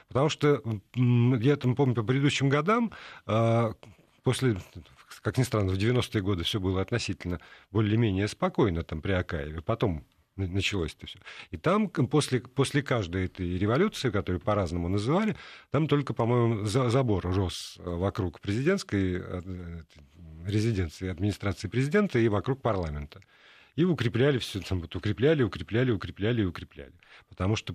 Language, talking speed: Russian, 130 wpm